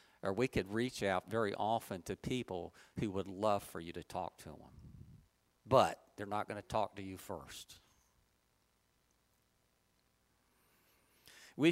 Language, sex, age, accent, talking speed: English, male, 50-69, American, 145 wpm